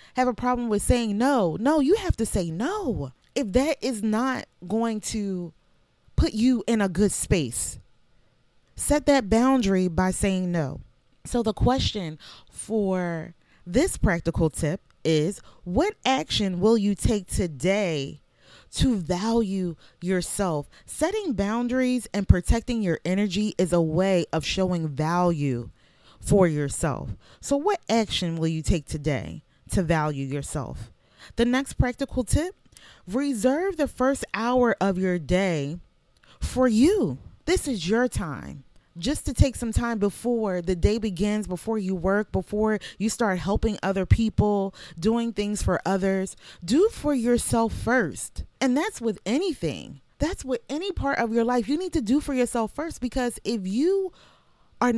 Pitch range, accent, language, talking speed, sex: 180-250 Hz, American, English, 150 wpm, female